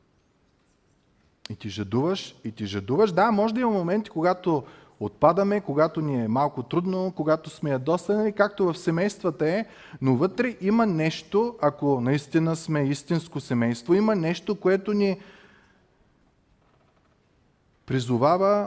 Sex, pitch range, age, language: male, 115-160 Hz, 30-49, Bulgarian